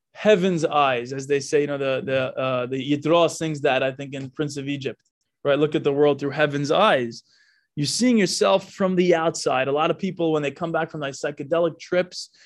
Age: 20-39